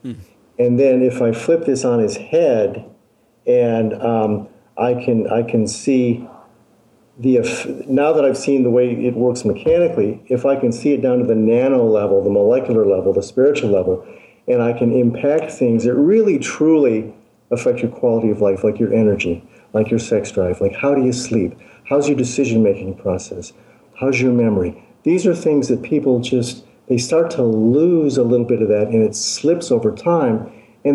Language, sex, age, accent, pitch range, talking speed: English, male, 50-69, American, 115-140 Hz, 190 wpm